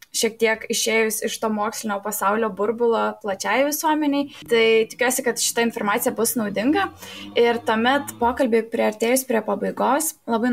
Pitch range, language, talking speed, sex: 215-255 Hz, English, 145 wpm, female